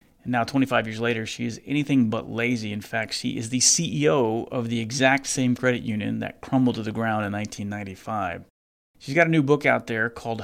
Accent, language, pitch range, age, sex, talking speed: American, English, 110-125 Hz, 30-49, male, 205 wpm